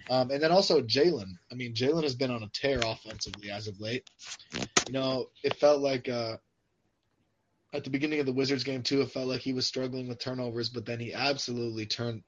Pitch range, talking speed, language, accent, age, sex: 115-140 Hz, 215 wpm, English, American, 20-39, male